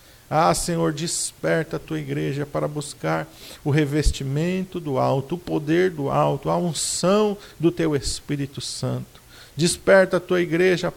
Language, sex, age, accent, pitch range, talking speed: Portuguese, male, 50-69, Brazilian, 135-180 Hz, 140 wpm